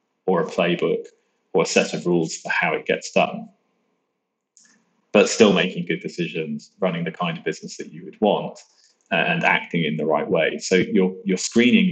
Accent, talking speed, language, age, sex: British, 185 wpm, English, 20-39, male